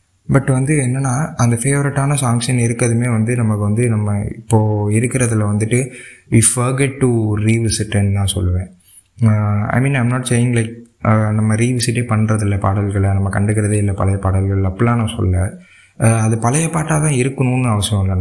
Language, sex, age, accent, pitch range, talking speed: Tamil, male, 20-39, native, 100-120 Hz, 145 wpm